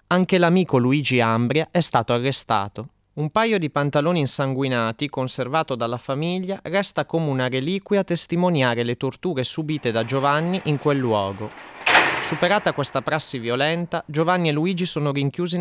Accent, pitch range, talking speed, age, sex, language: native, 125-165 Hz, 145 wpm, 30-49, male, Italian